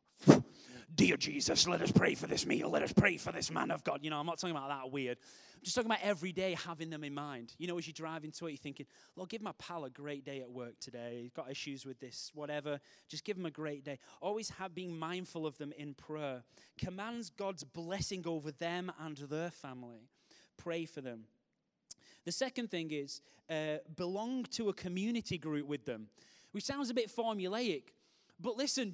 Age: 20-39